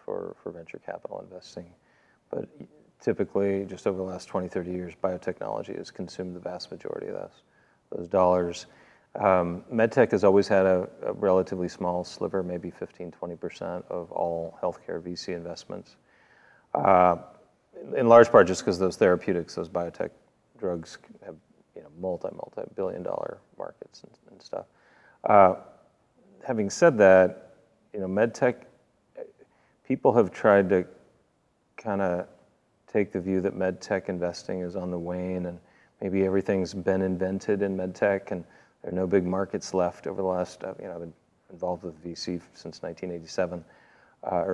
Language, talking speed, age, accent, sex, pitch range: English, 150 wpm, 40-59, American, male, 90-95 Hz